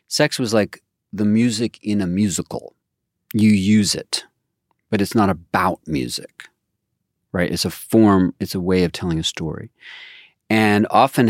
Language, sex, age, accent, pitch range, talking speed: English, male, 40-59, American, 85-105 Hz, 155 wpm